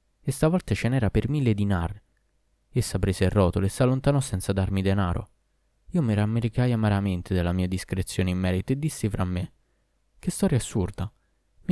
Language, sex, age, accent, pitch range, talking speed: Italian, male, 20-39, native, 95-135 Hz, 175 wpm